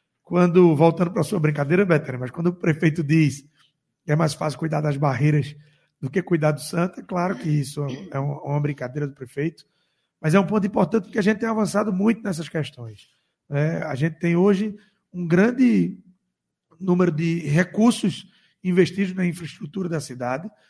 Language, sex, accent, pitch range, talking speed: Portuguese, male, Brazilian, 150-185 Hz, 175 wpm